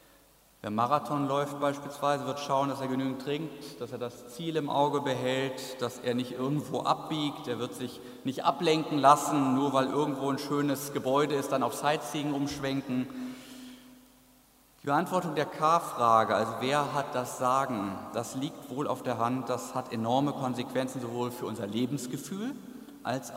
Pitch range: 120-145 Hz